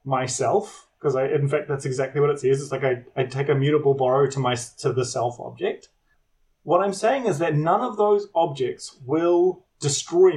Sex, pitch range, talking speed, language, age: male, 130-165 Hz, 205 wpm, English, 30-49